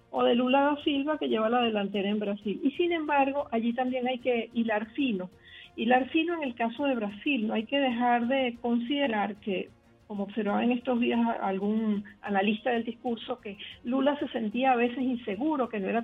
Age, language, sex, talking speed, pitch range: 50-69, Spanish, female, 200 wpm, 210-255 Hz